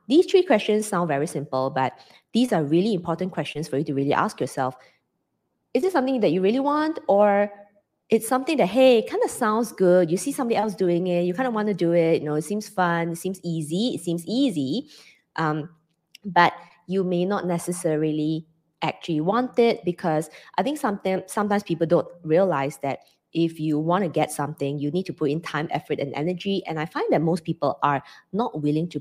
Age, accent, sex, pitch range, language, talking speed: 20-39, Malaysian, female, 155-205 Hz, English, 205 wpm